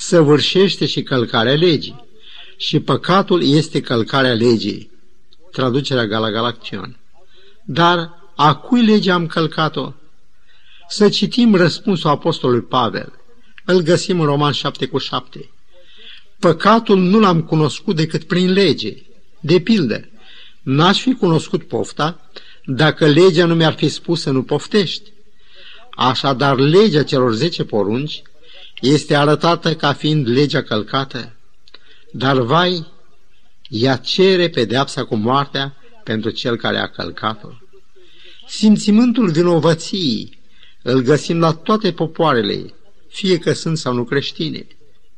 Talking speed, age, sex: 115 wpm, 50-69, male